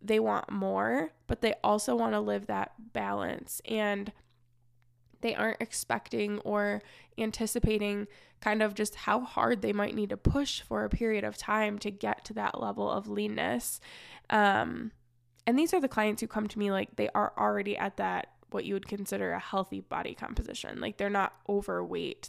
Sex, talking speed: female, 180 wpm